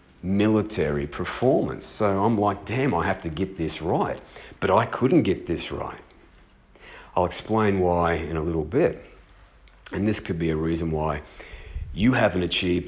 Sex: male